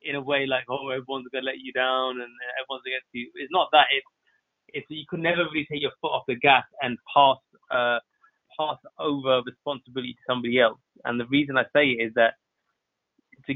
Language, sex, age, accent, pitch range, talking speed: English, male, 20-39, British, 120-140 Hz, 210 wpm